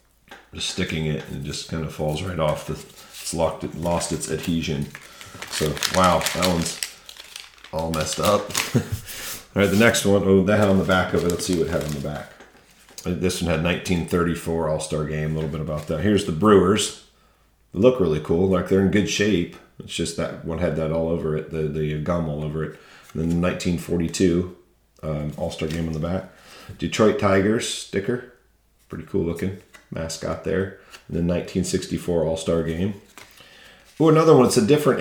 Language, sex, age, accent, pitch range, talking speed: English, male, 40-59, American, 80-95 Hz, 190 wpm